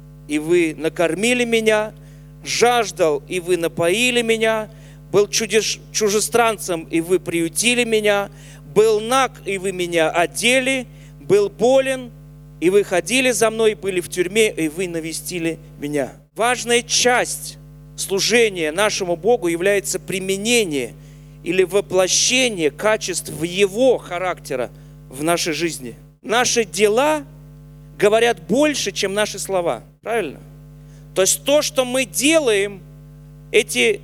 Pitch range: 150-230 Hz